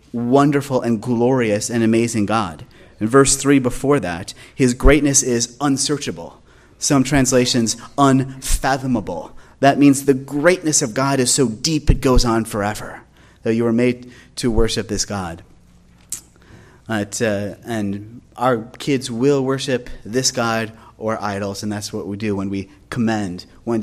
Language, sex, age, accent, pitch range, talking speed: English, male, 30-49, American, 100-125 Hz, 150 wpm